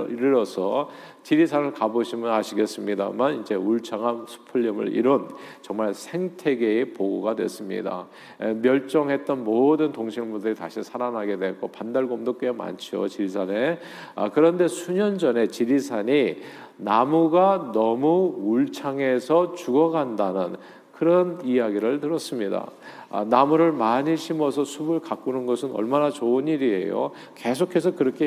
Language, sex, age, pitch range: Korean, male, 50-69, 110-165 Hz